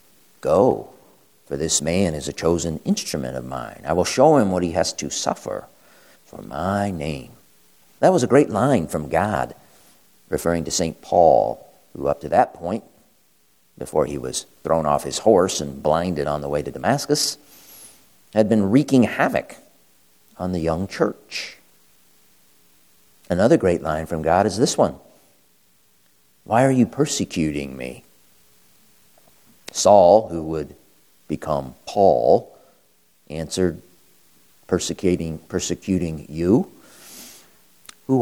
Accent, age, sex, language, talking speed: American, 50-69, male, English, 130 wpm